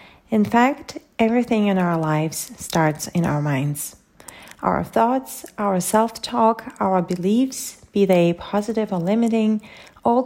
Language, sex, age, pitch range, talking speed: English, female, 30-49, 185-225 Hz, 130 wpm